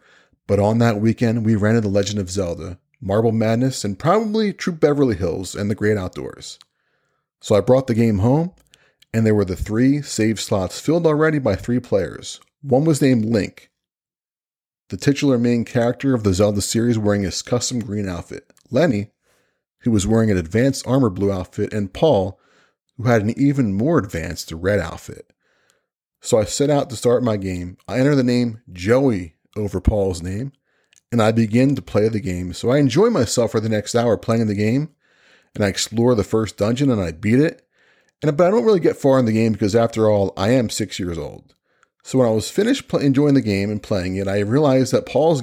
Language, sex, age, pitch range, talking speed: English, male, 30-49, 100-130 Hz, 200 wpm